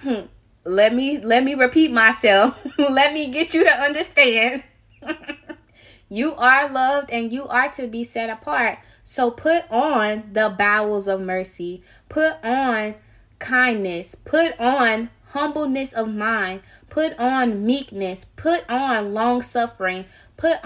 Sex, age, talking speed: female, 20-39, 130 wpm